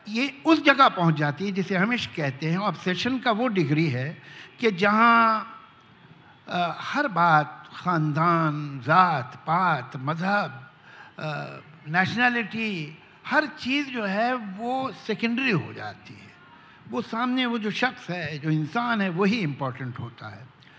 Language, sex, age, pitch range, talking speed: Hindi, male, 60-79, 155-245 Hz, 135 wpm